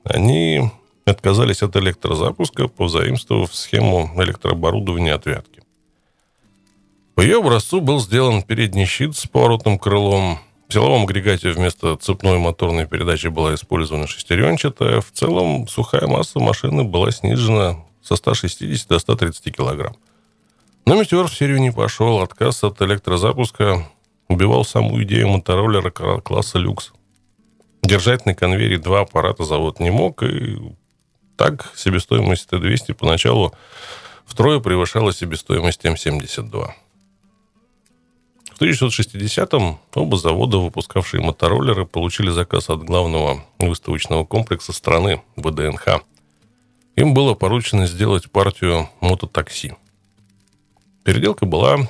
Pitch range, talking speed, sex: 85-110 Hz, 110 wpm, male